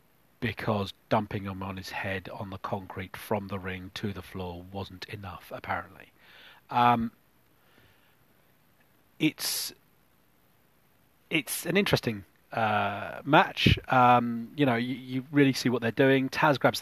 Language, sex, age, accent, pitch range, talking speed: English, male, 30-49, British, 100-130 Hz, 130 wpm